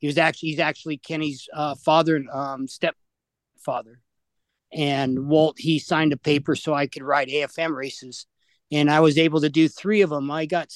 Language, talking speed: English, 190 wpm